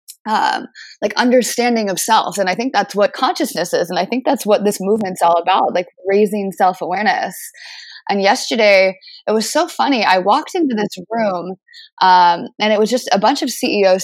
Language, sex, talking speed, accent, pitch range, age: English, female, 190 wpm, American, 185-245 Hz, 20-39